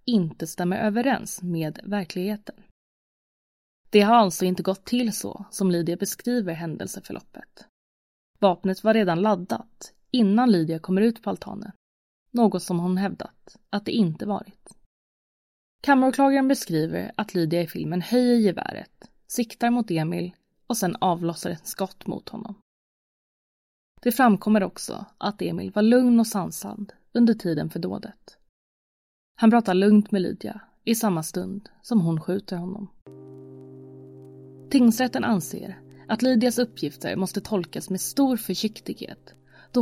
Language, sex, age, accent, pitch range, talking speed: Swedish, female, 20-39, native, 170-220 Hz, 135 wpm